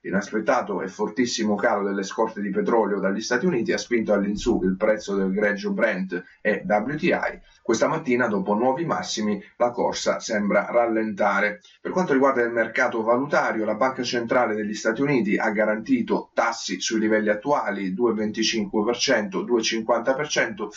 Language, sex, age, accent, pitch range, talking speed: Italian, male, 30-49, native, 100-125 Hz, 145 wpm